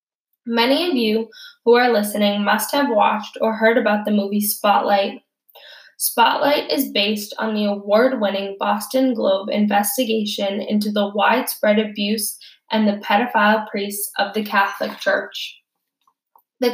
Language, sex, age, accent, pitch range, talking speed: English, female, 10-29, American, 205-245 Hz, 135 wpm